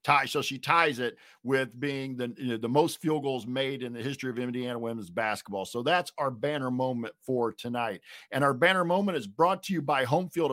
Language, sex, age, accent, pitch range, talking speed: English, male, 50-69, American, 120-155 Hz, 220 wpm